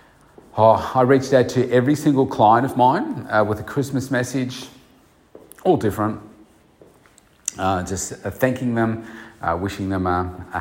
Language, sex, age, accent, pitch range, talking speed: English, male, 40-59, Australian, 95-115 Hz, 155 wpm